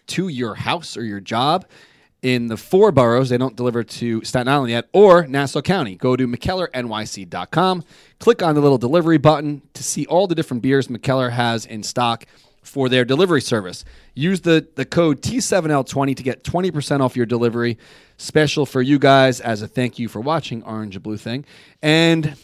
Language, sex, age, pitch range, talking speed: English, male, 30-49, 120-150 Hz, 185 wpm